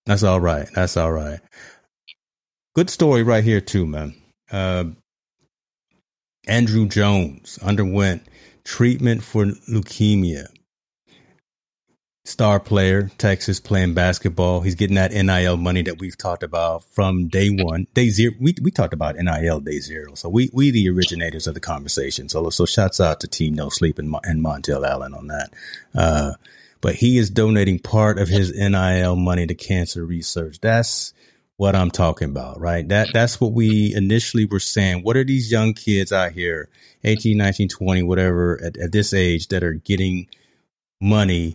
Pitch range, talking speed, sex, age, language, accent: 85-105 Hz, 165 wpm, male, 30-49, English, American